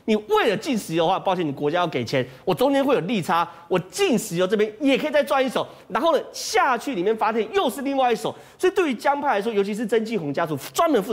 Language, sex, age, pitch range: Chinese, male, 30-49, 180-295 Hz